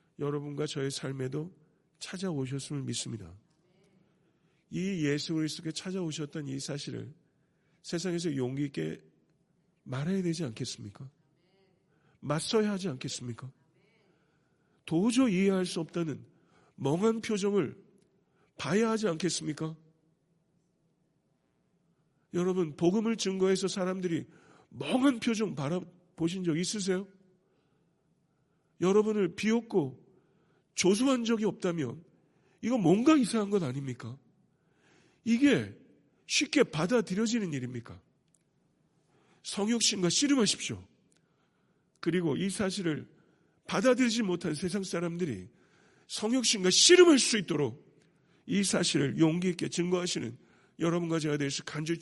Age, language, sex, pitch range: 50-69, Korean, male, 150-195 Hz